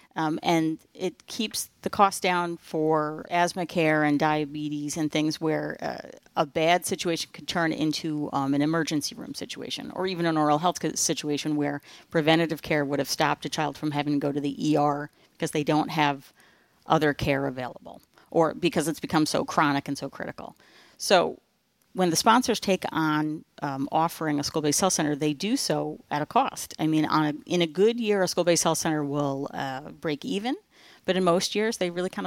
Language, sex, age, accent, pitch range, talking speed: English, female, 40-59, American, 145-170 Hz, 190 wpm